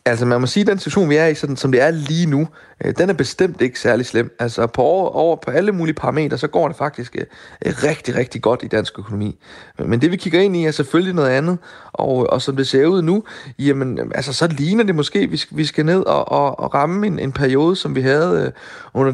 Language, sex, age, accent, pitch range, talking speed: Danish, male, 30-49, native, 125-160 Hz, 235 wpm